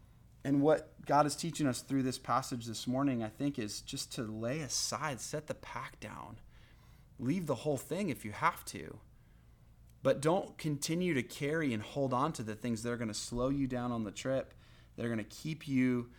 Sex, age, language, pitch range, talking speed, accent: male, 30-49, English, 105-125 Hz, 210 wpm, American